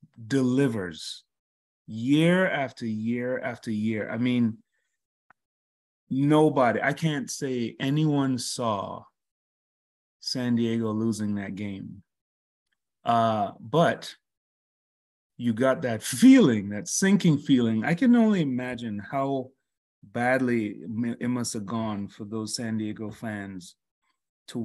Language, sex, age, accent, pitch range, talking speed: English, male, 30-49, American, 115-165 Hz, 105 wpm